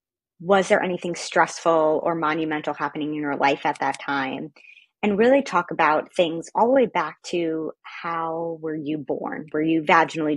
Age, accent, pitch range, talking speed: 30-49, American, 155-195 Hz, 175 wpm